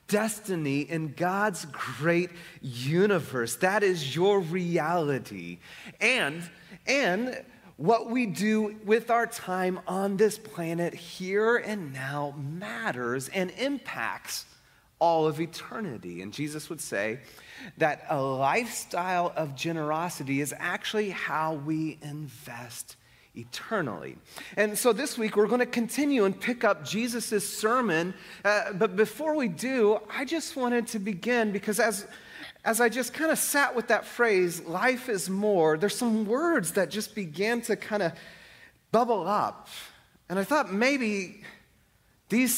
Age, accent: 30-49, American